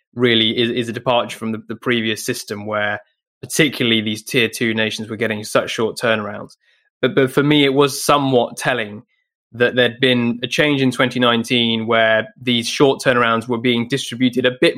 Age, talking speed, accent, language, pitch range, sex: 20-39, 185 wpm, British, English, 115-130 Hz, male